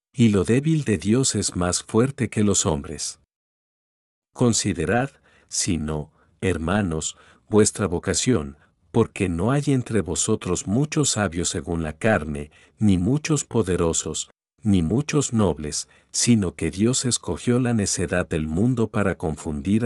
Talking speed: 130 wpm